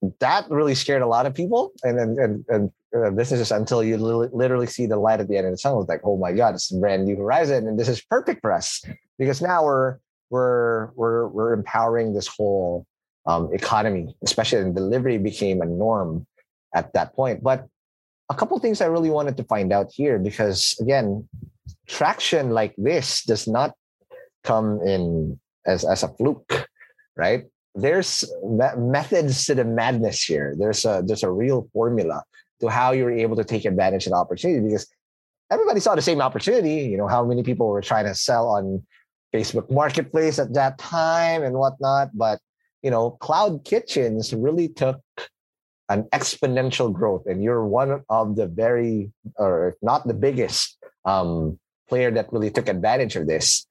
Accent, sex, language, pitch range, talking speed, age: American, male, English, 110-140 Hz, 175 wpm, 30-49